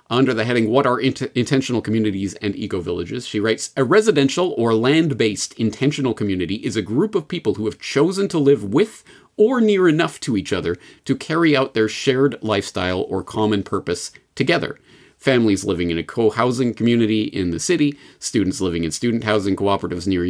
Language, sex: English, male